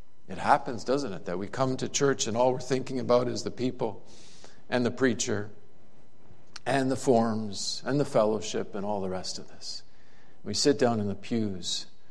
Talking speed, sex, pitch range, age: 190 wpm, male, 120-180 Hz, 50-69